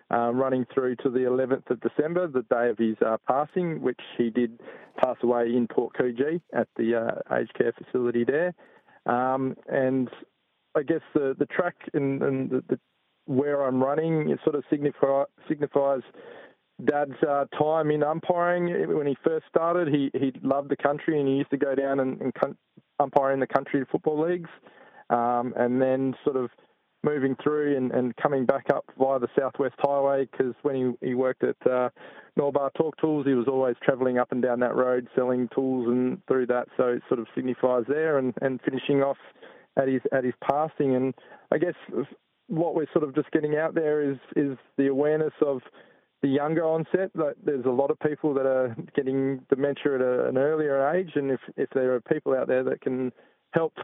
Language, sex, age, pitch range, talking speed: English, male, 20-39, 125-150 Hz, 195 wpm